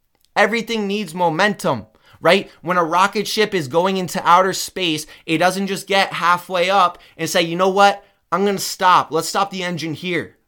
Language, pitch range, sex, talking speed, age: English, 145-180 Hz, male, 190 wpm, 20-39